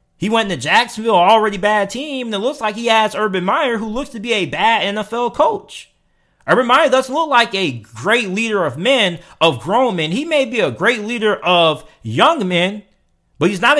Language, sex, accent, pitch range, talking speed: English, male, American, 190-265 Hz, 210 wpm